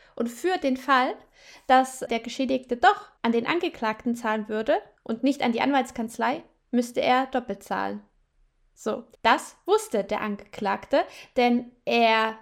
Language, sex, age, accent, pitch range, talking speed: German, female, 10-29, German, 220-270 Hz, 140 wpm